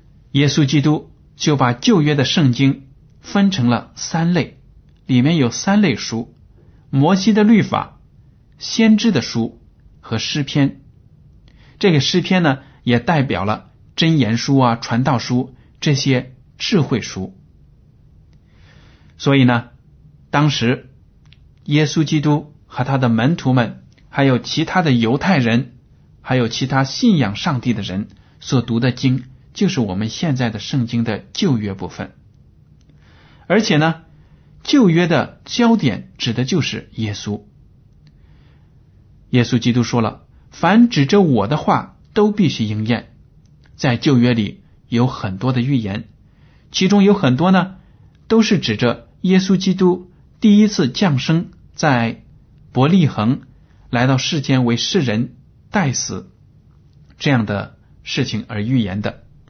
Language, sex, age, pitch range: Chinese, male, 60-79, 120-160 Hz